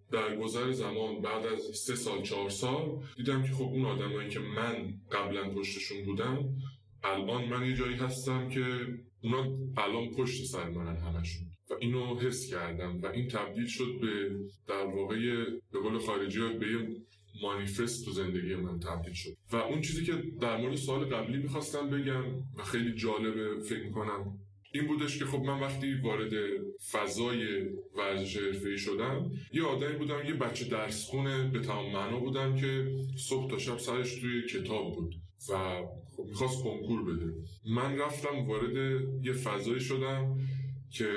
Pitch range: 100-130 Hz